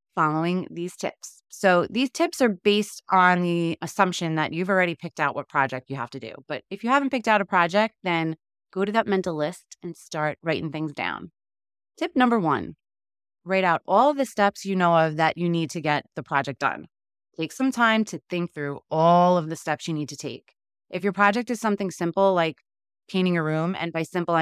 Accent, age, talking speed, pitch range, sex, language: American, 20-39, 215 wpm, 150-190 Hz, female, English